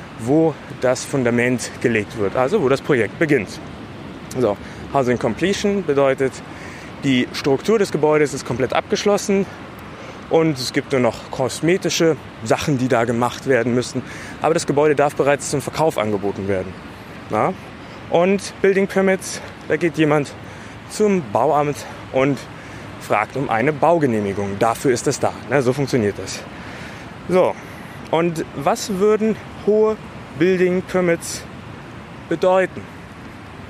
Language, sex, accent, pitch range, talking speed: German, male, German, 120-165 Hz, 130 wpm